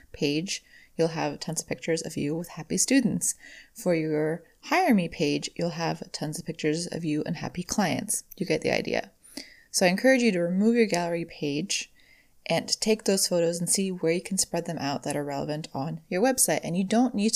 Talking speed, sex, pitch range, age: 210 wpm, female, 160-220 Hz, 20-39